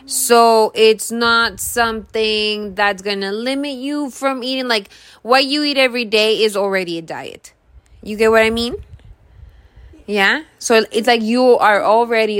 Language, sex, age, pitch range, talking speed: English, female, 20-39, 185-230 Hz, 160 wpm